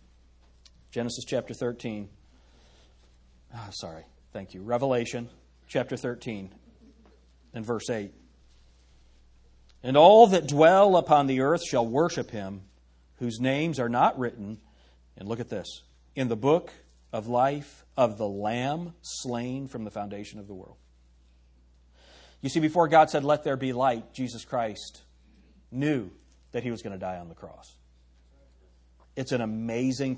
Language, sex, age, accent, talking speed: English, male, 40-59, American, 140 wpm